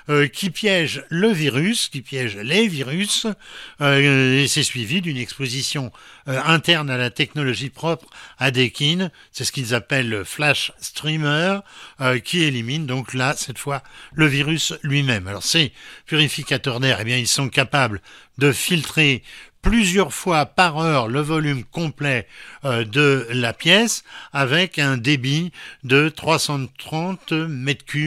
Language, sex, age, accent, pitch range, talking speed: French, male, 60-79, French, 130-160 Hz, 140 wpm